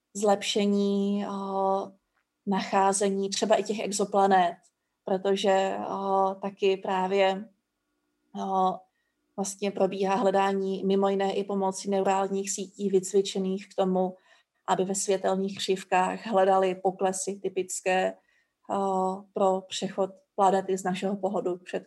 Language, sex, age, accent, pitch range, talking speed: Czech, female, 30-49, native, 190-205 Hz, 105 wpm